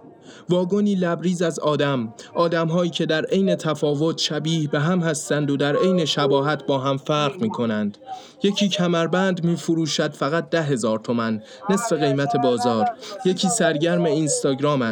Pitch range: 145-180 Hz